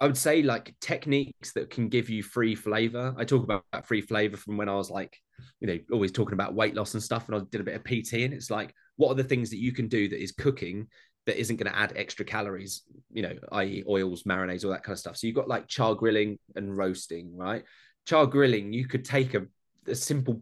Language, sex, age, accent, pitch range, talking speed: English, male, 20-39, British, 100-125 Hz, 255 wpm